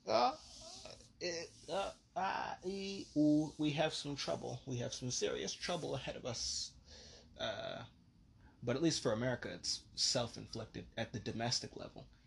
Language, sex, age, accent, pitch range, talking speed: English, male, 20-39, American, 110-135 Hz, 145 wpm